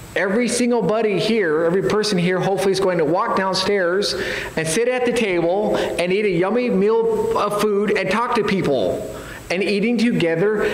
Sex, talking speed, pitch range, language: male, 180 wpm, 180-215 Hz, English